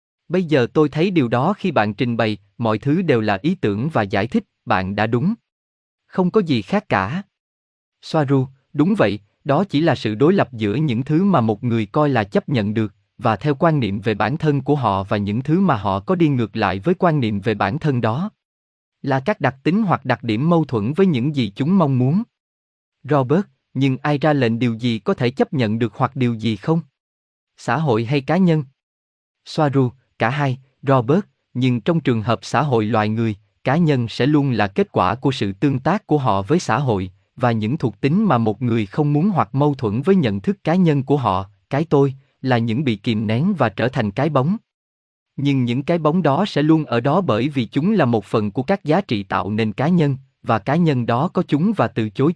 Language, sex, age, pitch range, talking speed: Vietnamese, male, 20-39, 110-155 Hz, 230 wpm